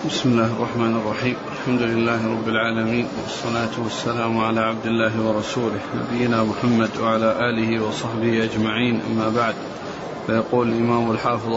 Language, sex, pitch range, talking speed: Arabic, male, 120-145 Hz, 130 wpm